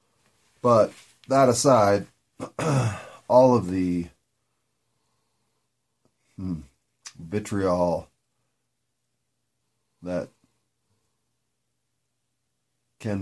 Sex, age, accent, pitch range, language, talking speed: male, 40-59, American, 85-115 Hz, English, 45 wpm